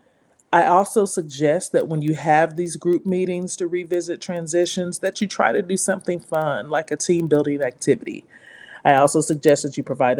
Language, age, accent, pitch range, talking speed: English, 40-59, American, 150-180 Hz, 180 wpm